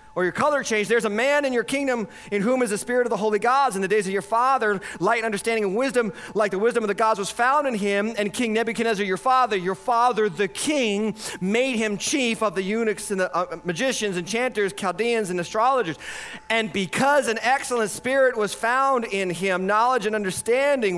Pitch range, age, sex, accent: 190-260 Hz, 40-59, male, American